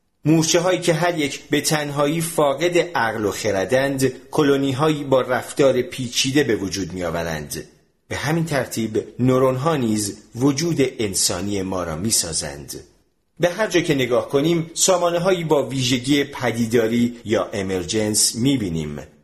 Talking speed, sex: 145 wpm, male